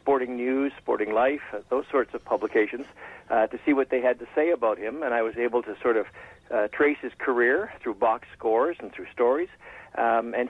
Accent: American